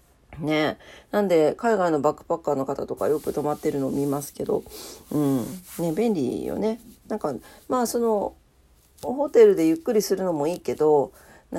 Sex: female